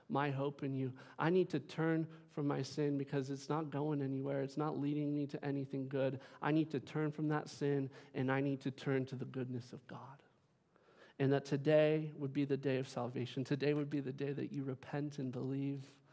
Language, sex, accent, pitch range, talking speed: English, male, American, 140-170 Hz, 220 wpm